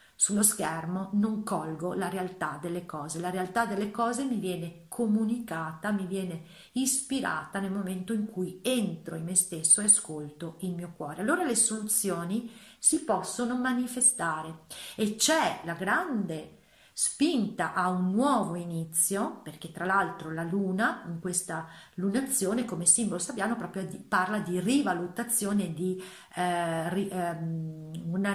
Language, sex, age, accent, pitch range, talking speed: Italian, female, 40-59, native, 180-235 Hz, 135 wpm